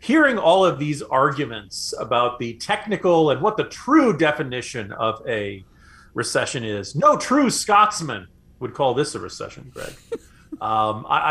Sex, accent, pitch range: male, American, 110-160 Hz